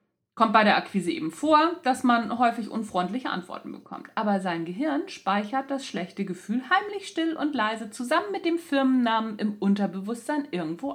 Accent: German